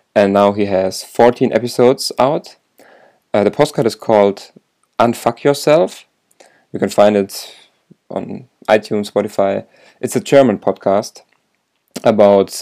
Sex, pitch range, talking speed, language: male, 100-120 Hz, 125 wpm, English